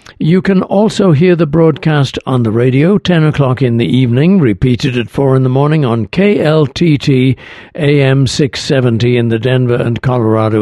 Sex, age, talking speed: male, 60-79, 165 wpm